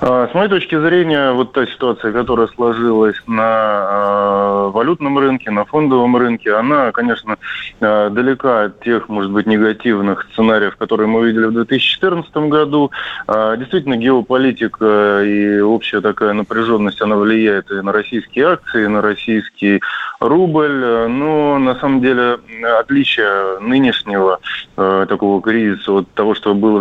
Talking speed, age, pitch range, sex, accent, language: 130 wpm, 20-39, 105-120 Hz, male, native, Russian